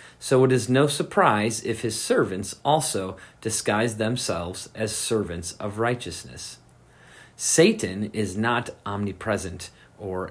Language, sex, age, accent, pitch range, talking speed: English, male, 40-59, American, 95-120 Hz, 115 wpm